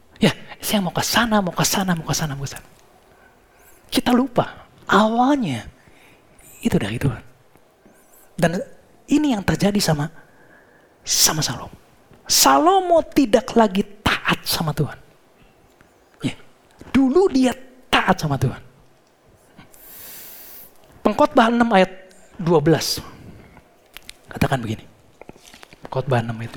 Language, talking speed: Indonesian, 95 wpm